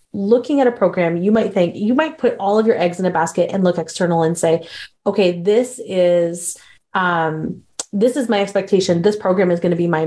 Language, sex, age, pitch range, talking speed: English, female, 30-49, 175-220 Hz, 220 wpm